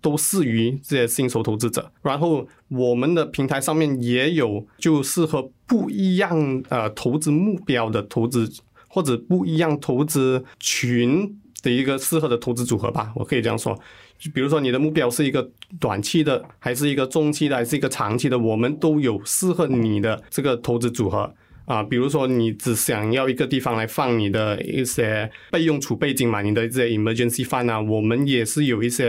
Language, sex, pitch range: Chinese, male, 115-150 Hz